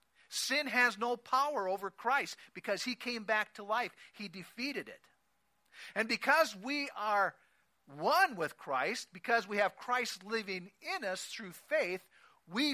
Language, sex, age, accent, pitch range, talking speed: English, male, 50-69, American, 190-255 Hz, 150 wpm